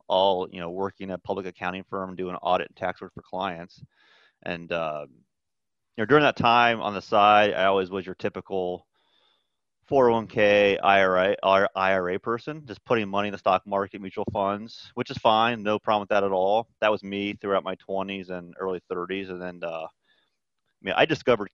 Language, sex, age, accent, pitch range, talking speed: English, male, 30-49, American, 95-105 Hz, 195 wpm